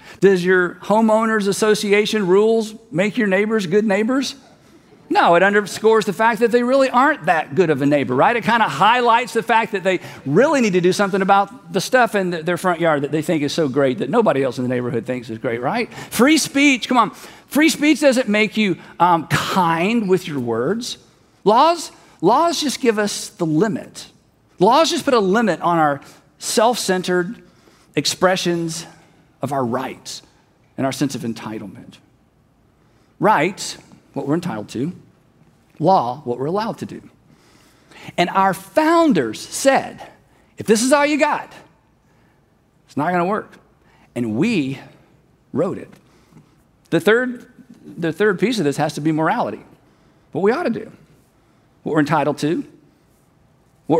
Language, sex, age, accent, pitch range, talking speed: English, male, 50-69, American, 155-230 Hz, 165 wpm